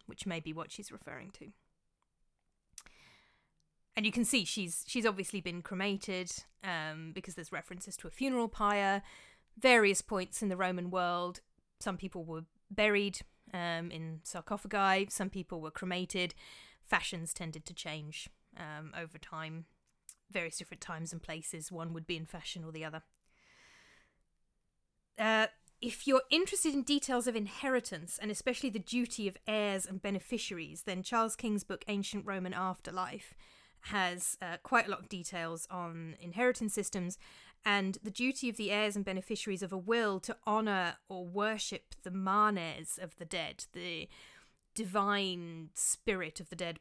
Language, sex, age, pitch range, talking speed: English, female, 30-49, 170-210 Hz, 155 wpm